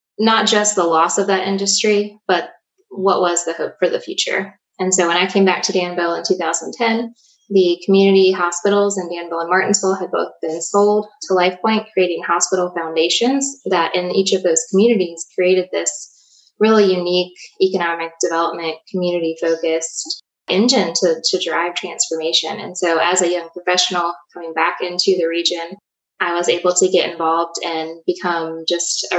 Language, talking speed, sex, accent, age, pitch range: English, 165 wpm, female, American, 20-39, 170-195 Hz